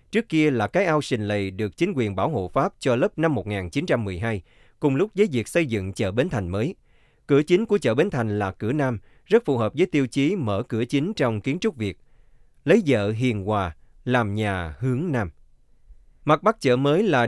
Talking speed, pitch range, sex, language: 215 wpm, 105-145 Hz, male, Vietnamese